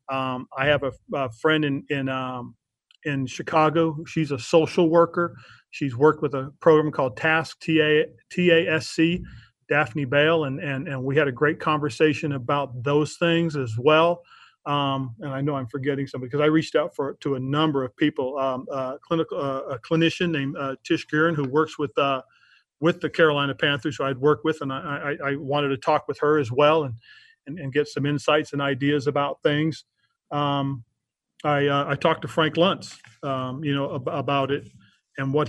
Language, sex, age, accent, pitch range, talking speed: English, male, 40-59, American, 135-155 Hz, 195 wpm